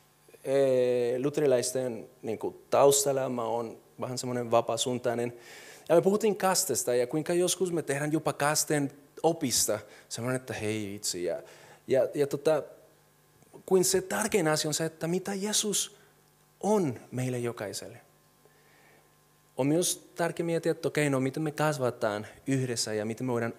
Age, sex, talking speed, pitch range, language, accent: 30-49, male, 140 wpm, 120-155 Hz, Finnish, native